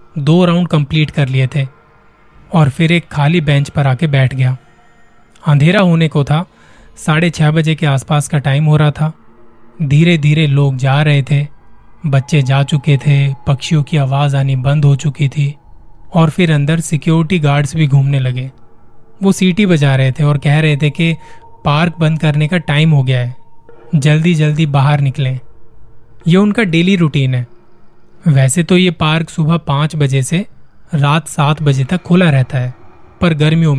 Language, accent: Hindi, native